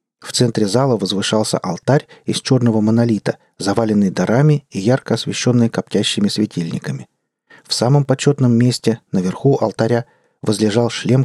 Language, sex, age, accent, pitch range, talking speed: Russian, male, 40-59, native, 110-145 Hz, 125 wpm